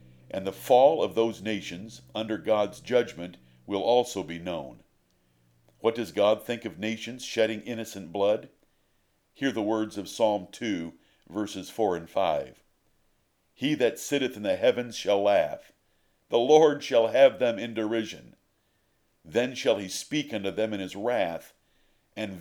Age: 60-79